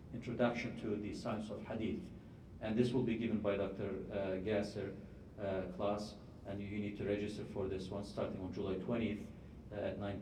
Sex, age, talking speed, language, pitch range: male, 50-69, 195 wpm, English, 95-105 Hz